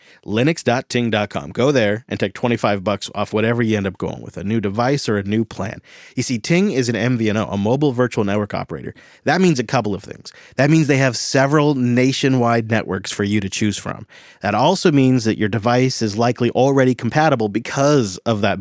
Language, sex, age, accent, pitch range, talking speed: English, male, 30-49, American, 110-140 Hz, 205 wpm